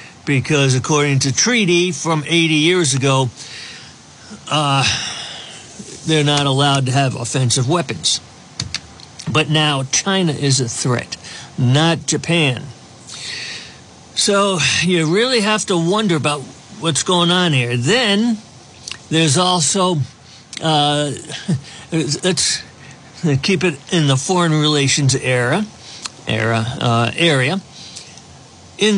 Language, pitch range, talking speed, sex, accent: English, 135-170 Hz, 105 wpm, male, American